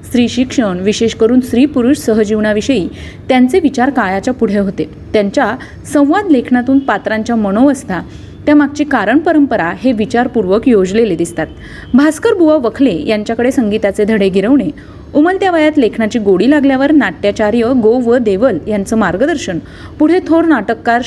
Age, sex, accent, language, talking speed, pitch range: 30-49, female, native, Marathi, 125 wpm, 215-275 Hz